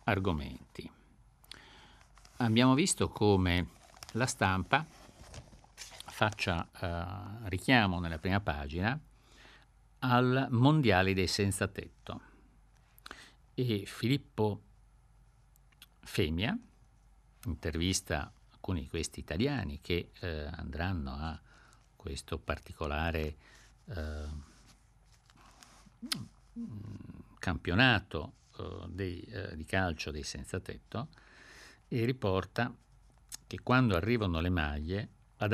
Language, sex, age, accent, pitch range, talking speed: Italian, male, 50-69, native, 85-120 Hz, 80 wpm